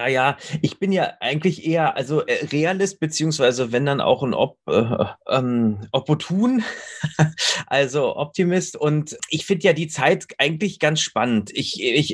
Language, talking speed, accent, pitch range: German, 150 wpm, German, 140-170 Hz